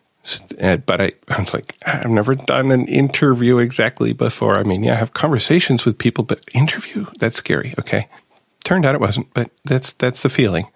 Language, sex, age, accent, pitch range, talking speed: English, male, 40-59, American, 100-120 Hz, 190 wpm